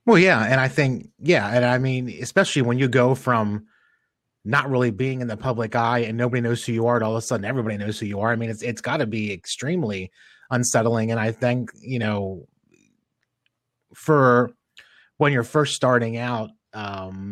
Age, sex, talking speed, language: 30-49, male, 200 wpm, English